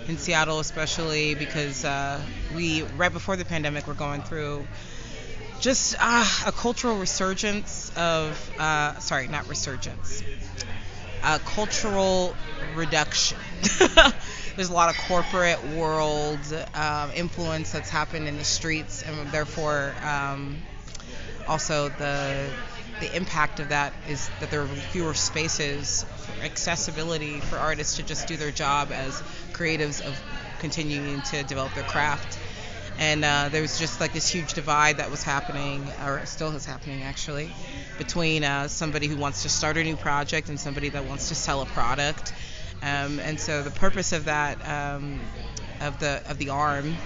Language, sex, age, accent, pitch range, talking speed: English, female, 30-49, American, 140-160 Hz, 150 wpm